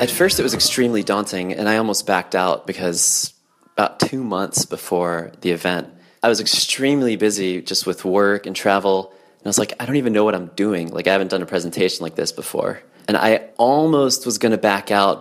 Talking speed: 215 wpm